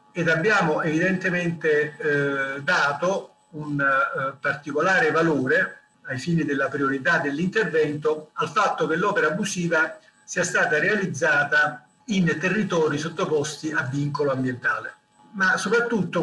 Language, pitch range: Italian, 145-190 Hz